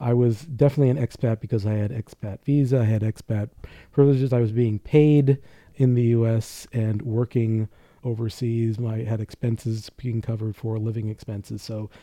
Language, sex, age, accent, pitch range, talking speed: English, male, 40-59, American, 110-125 Hz, 170 wpm